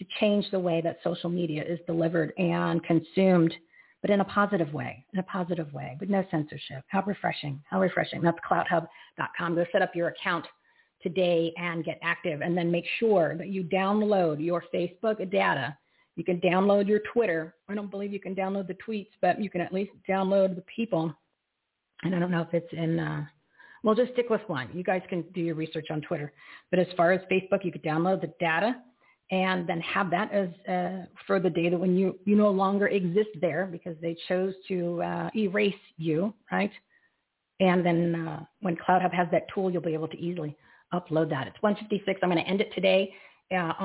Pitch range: 170-195 Hz